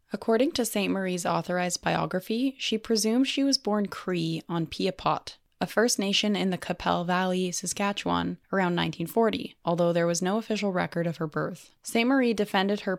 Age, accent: 10-29, American